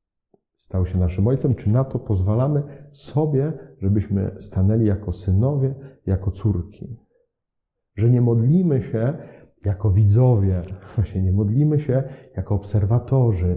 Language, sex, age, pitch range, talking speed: Polish, male, 40-59, 95-130 Hz, 120 wpm